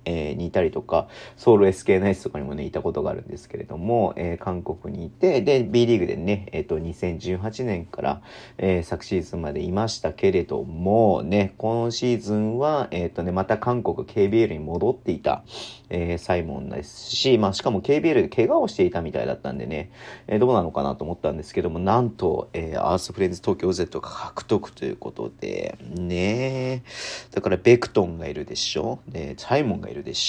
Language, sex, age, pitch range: Japanese, male, 40-59, 85-115 Hz